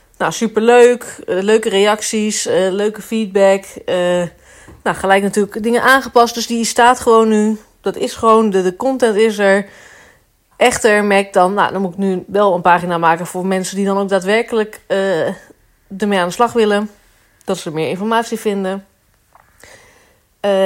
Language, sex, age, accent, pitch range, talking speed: Dutch, female, 30-49, Dutch, 180-220 Hz, 170 wpm